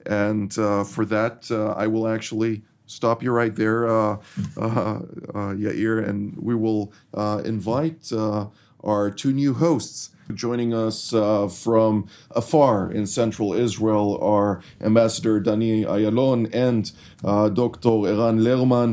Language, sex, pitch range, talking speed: English, male, 105-120 Hz, 135 wpm